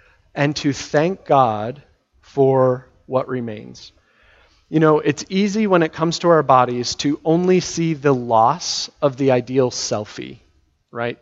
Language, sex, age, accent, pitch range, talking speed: English, male, 30-49, American, 125-155 Hz, 145 wpm